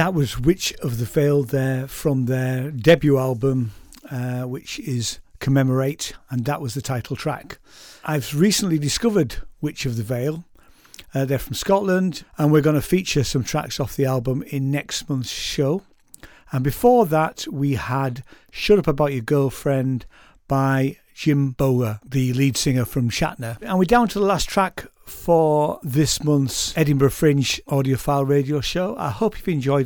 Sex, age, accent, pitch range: male, 50-69, British, 135-165 Hz